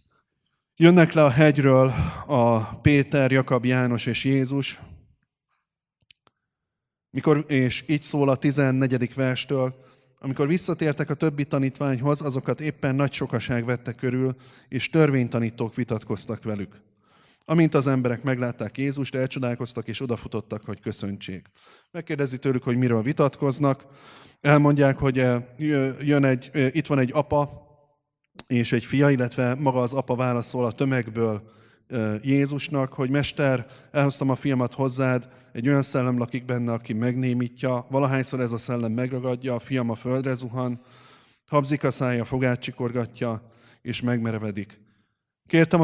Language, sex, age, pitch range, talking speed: Hungarian, male, 20-39, 120-140 Hz, 125 wpm